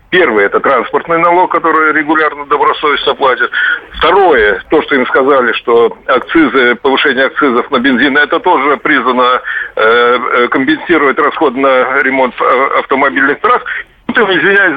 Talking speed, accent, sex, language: 135 wpm, native, male, Russian